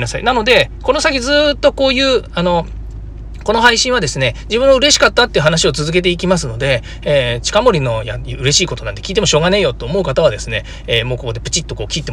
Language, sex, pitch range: Japanese, male, 120-190 Hz